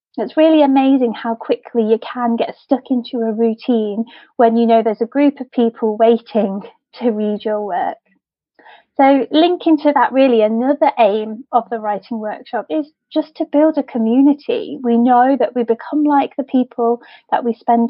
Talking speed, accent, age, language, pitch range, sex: 180 wpm, British, 20-39, English, 230-275 Hz, female